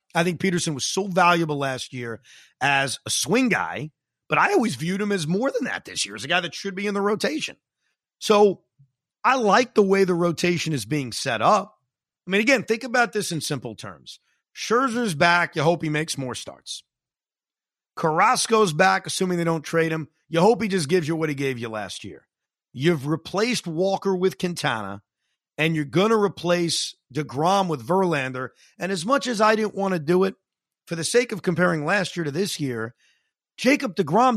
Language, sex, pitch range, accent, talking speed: English, male, 150-200 Hz, American, 195 wpm